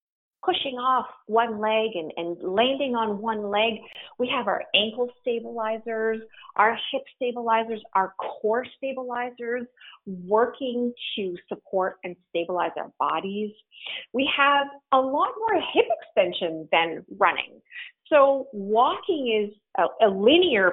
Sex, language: female, English